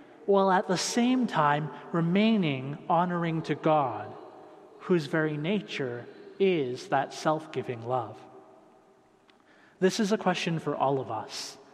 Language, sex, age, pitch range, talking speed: English, male, 30-49, 155-190 Hz, 125 wpm